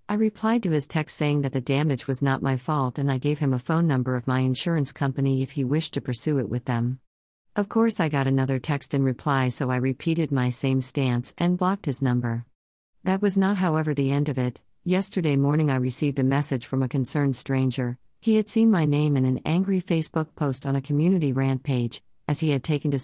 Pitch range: 130-160 Hz